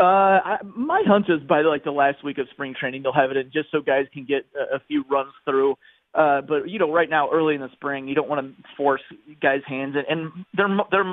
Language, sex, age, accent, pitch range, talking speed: English, male, 30-49, American, 140-170 Hz, 260 wpm